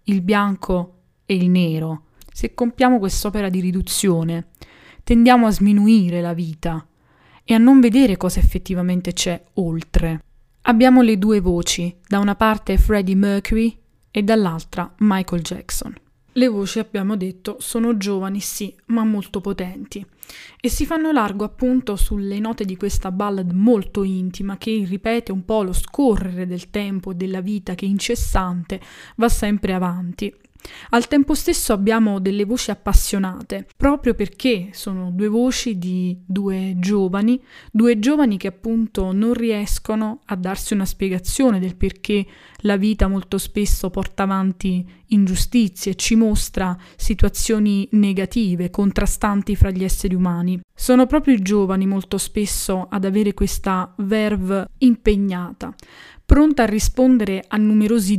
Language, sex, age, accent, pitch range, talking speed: Italian, female, 20-39, native, 185-220 Hz, 135 wpm